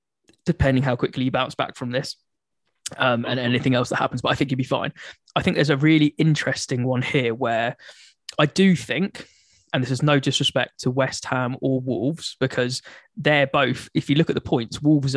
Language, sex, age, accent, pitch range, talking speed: English, male, 20-39, British, 125-145 Hz, 205 wpm